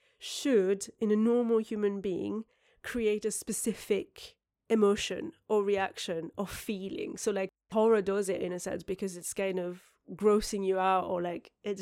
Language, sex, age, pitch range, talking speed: English, female, 30-49, 185-215 Hz, 160 wpm